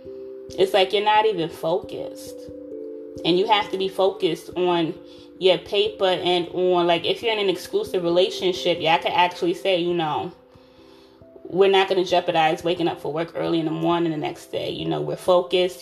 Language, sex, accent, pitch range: English, female, American, 160-185 Hz